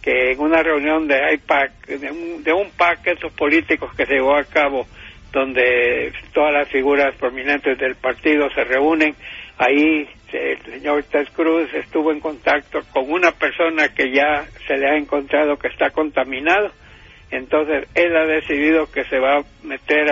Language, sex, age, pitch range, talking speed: English, male, 60-79, 135-160 Hz, 165 wpm